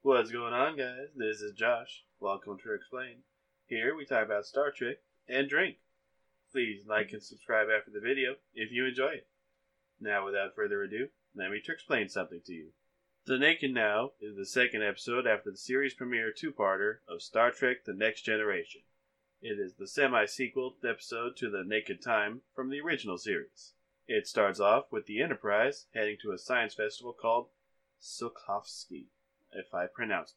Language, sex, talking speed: English, male, 170 wpm